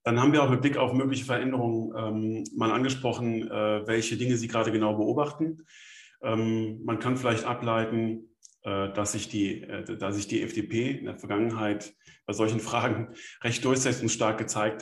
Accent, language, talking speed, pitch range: German, German, 175 wpm, 105-125 Hz